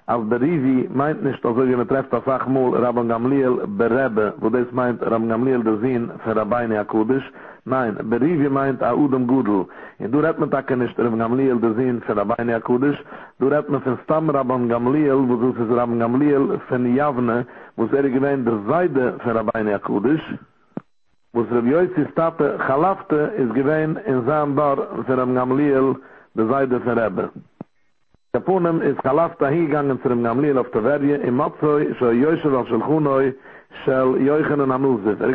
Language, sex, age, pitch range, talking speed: English, male, 50-69, 125-150 Hz, 140 wpm